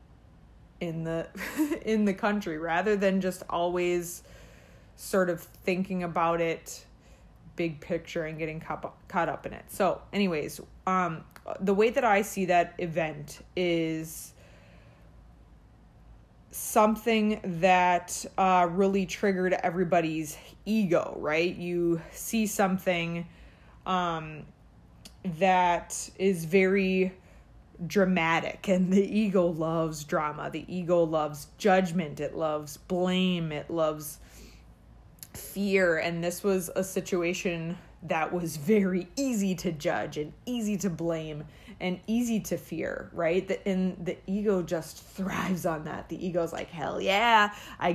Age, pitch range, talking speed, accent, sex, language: 20-39, 165-195 Hz, 120 wpm, American, female, English